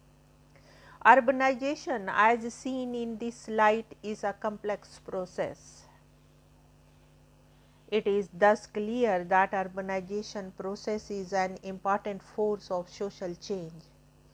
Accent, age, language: Indian, 50-69, English